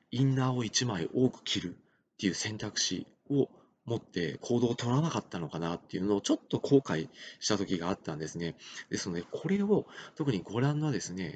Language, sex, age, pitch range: Japanese, male, 40-59, 100-155 Hz